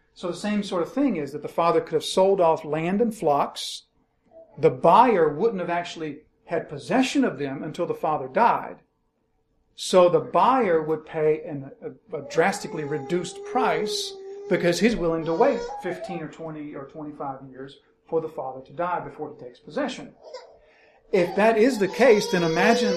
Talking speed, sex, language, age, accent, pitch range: 170 wpm, male, English, 40-59, American, 155-235 Hz